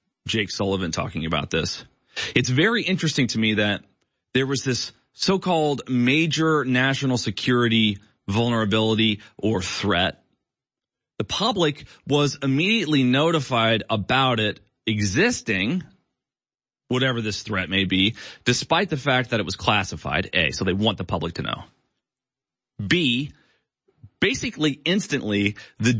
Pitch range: 110-150 Hz